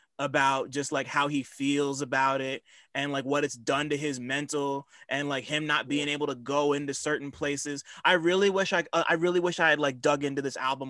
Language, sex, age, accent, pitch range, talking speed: English, male, 20-39, American, 130-160 Hz, 225 wpm